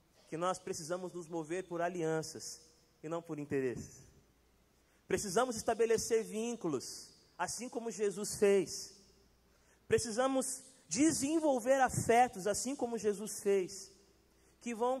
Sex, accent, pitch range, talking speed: male, Brazilian, 160-230 Hz, 110 wpm